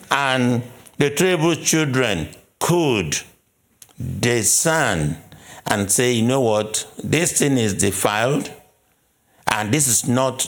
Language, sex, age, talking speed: English, male, 60-79, 110 wpm